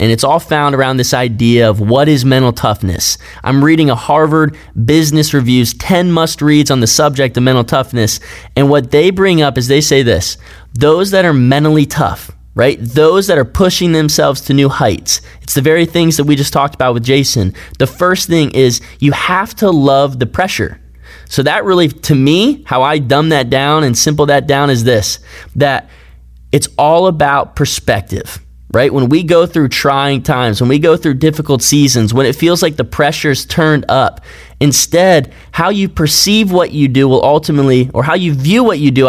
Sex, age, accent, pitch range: male, 20-39, American, 125-160 Hz